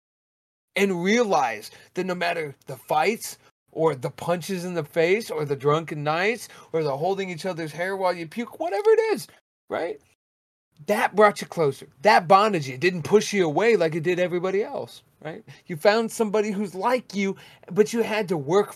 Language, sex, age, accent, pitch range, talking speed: English, male, 30-49, American, 150-205 Hz, 185 wpm